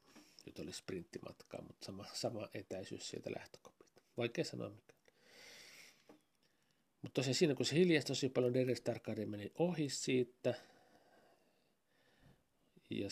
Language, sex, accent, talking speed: Finnish, male, native, 115 wpm